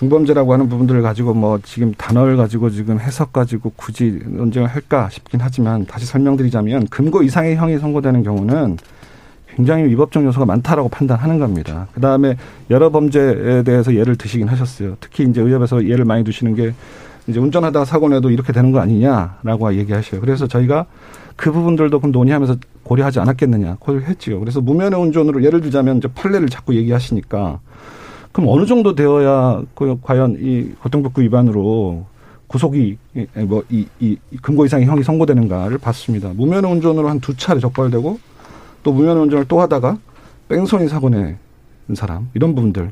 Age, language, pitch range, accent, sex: 40-59, Korean, 115-150 Hz, native, male